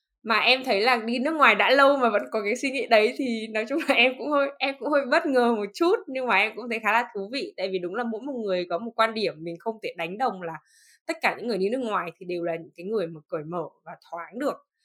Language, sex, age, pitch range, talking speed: Vietnamese, female, 10-29, 180-240 Hz, 305 wpm